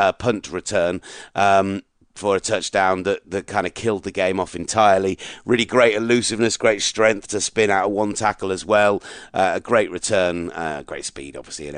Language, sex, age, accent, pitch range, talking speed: English, male, 30-49, British, 95-115 Hz, 195 wpm